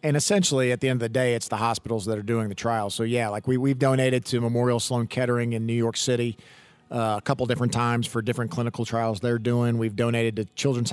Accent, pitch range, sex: American, 115-130 Hz, male